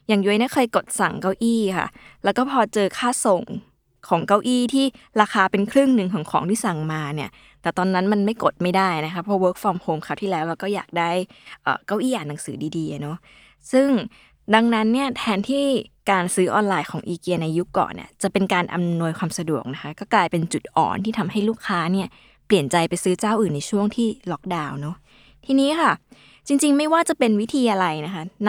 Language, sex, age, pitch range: Thai, female, 20-39, 175-230 Hz